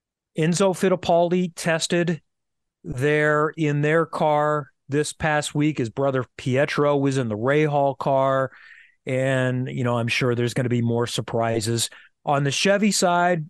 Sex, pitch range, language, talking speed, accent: male, 135-180 Hz, English, 150 wpm, American